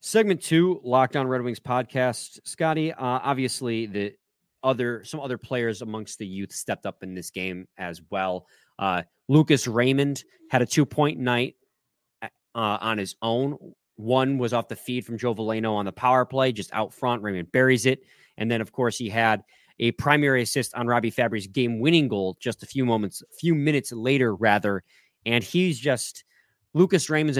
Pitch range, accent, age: 115-155 Hz, American, 30-49